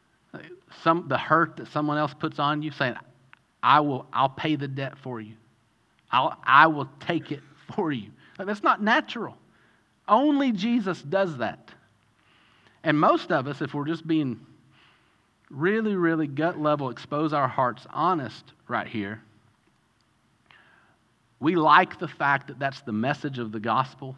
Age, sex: 40-59, male